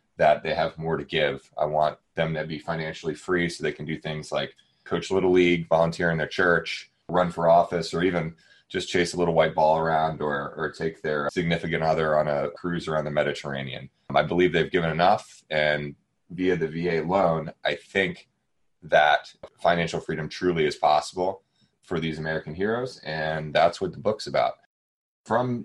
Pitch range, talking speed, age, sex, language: 75-90 Hz, 185 wpm, 20-39, male, English